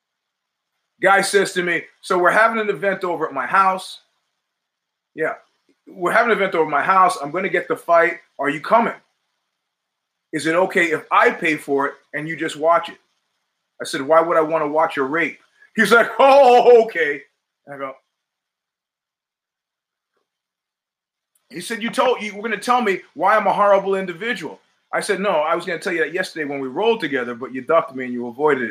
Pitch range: 150-220 Hz